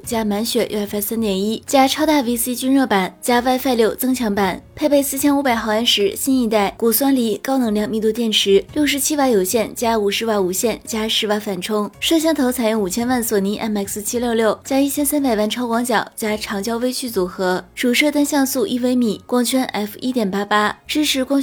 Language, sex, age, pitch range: Chinese, female, 20-39, 210-260 Hz